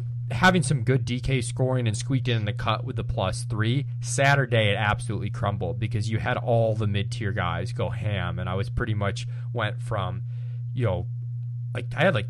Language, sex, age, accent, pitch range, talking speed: English, male, 20-39, American, 110-120 Hz, 200 wpm